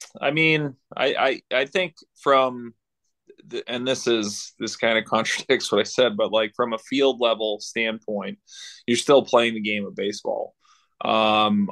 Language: English